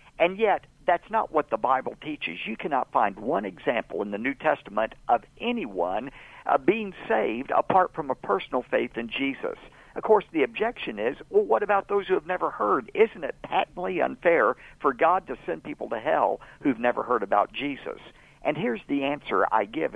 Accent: American